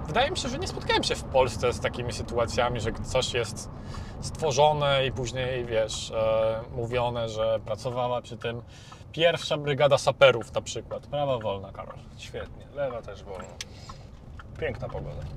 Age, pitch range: 20-39, 115-150 Hz